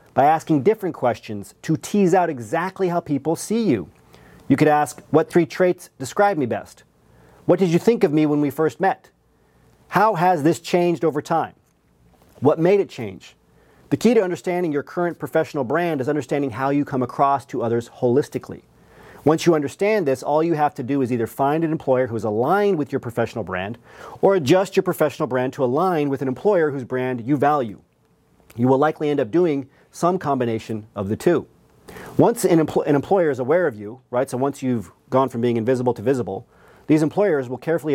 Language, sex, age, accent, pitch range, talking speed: English, male, 40-59, American, 130-170 Hz, 200 wpm